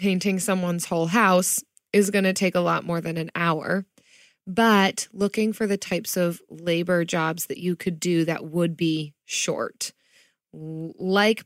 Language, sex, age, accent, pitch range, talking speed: English, female, 20-39, American, 170-205 Hz, 160 wpm